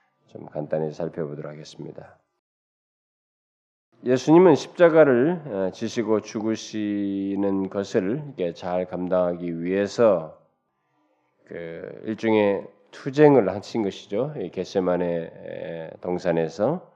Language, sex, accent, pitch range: Korean, male, native, 95-140 Hz